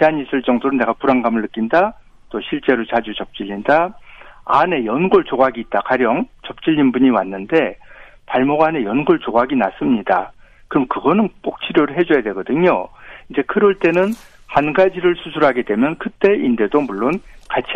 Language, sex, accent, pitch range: Korean, male, native, 125-175 Hz